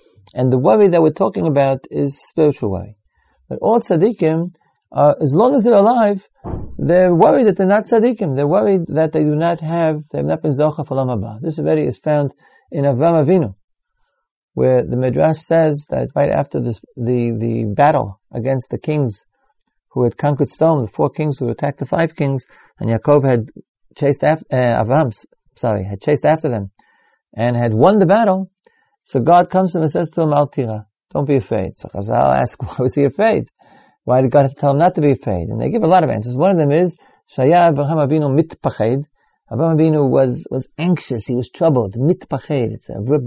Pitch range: 130-170 Hz